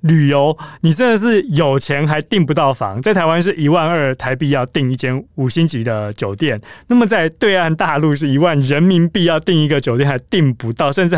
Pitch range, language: 130-190 Hz, Chinese